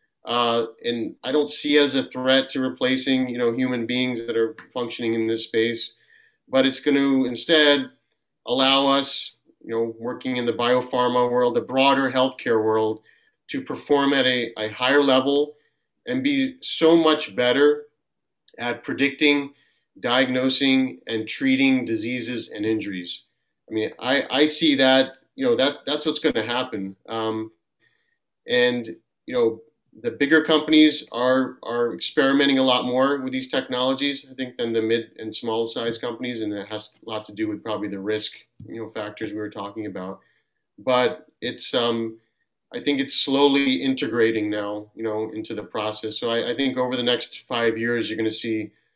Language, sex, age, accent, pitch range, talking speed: English, male, 30-49, American, 110-135 Hz, 175 wpm